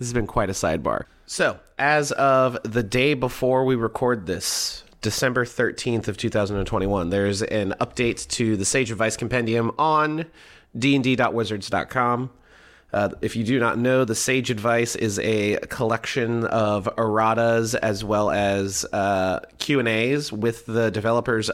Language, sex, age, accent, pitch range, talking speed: English, male, 30-49, American, 105-125 Hz, 140 wpm